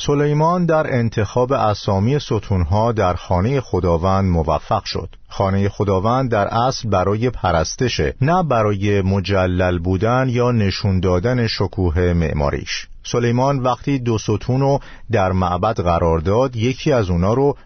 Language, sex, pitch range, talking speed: Persian, male, 95-125 Hz, 125 wpm